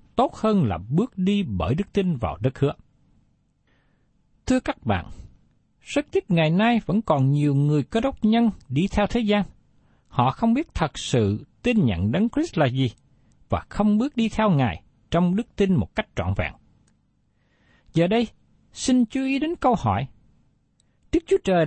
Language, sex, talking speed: Vietnamese, male, 175 wpm